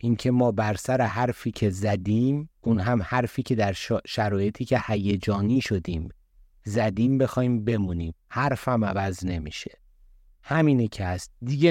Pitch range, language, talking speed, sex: 95-120 Hz, Persian, 140 wpm, male